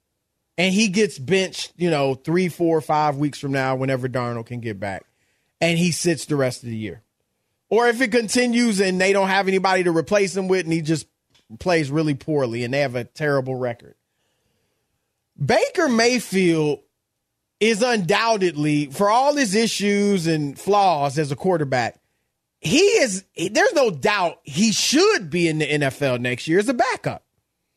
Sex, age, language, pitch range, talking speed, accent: male, 30-49, English, 150-240 Hz, 170 wpm, American